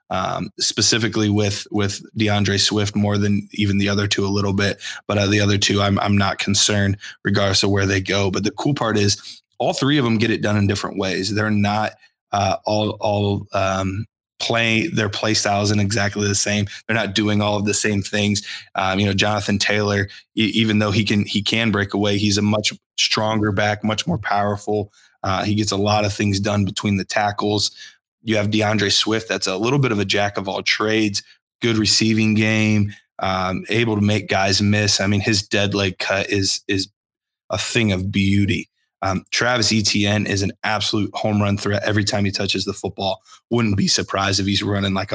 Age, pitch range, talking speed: 20-39, 100-110 Hz, 205 wpm